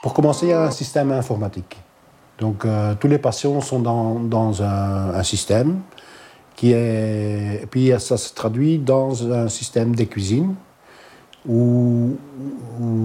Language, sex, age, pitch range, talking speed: French, male, 50-69, 105-130 Hz, 145 wpm